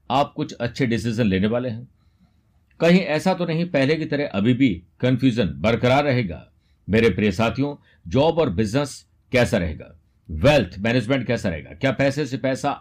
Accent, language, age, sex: native, Hindi, 50-69, male